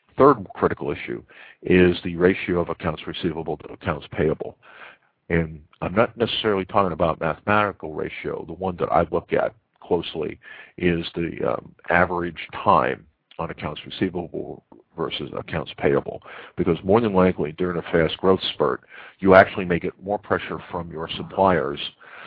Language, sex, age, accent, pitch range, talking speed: English, male, 50-69, American, 85-95 Hz, 150 wpm